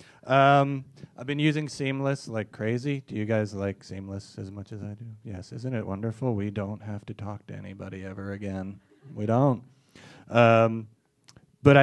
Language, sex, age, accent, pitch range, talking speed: English, male, 30-49, American, 110-145 Hz, 175 wpm